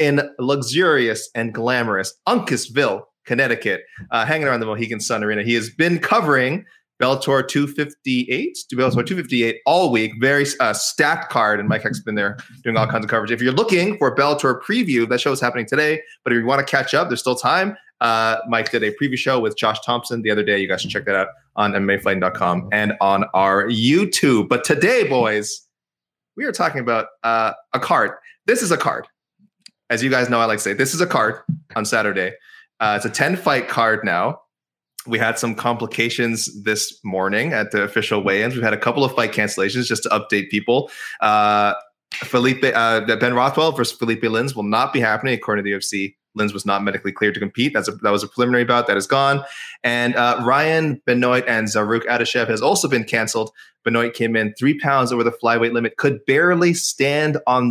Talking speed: 205 wpm